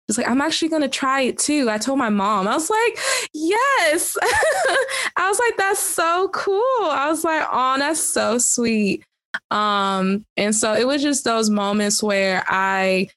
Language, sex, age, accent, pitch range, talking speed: English, female, 20-39, American, 185-230 Hz, 180 wpm